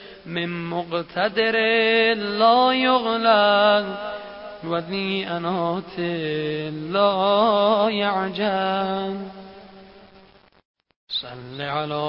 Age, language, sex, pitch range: 20-39, Persian, male, 150-195 Hz